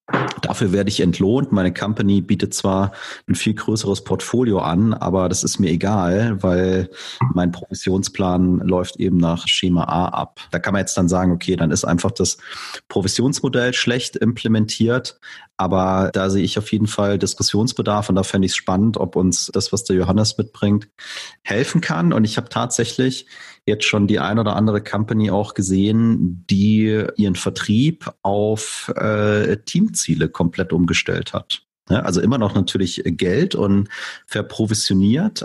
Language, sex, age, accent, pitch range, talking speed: German, male, 30-49, German, 95-110 Hz, 160 wpm